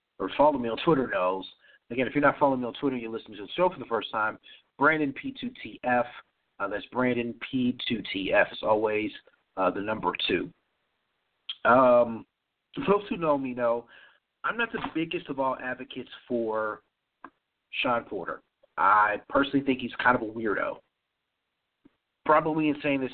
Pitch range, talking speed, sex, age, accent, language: 125-160 Hz, 170 wpm, male, 40-59, American, English